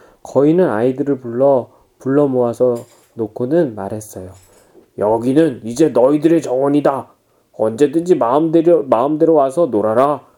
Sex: male